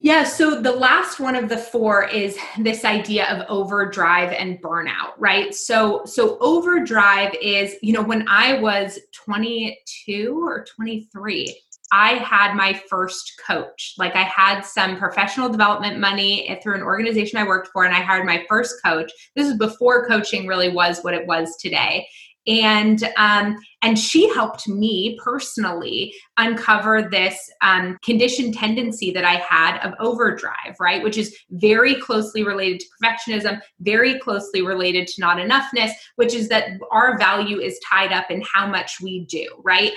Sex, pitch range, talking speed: female, 190-230 Hz, 160 wpm